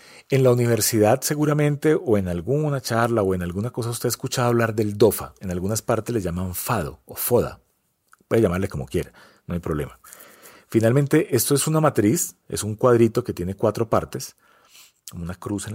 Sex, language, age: male, Spanish, 40-59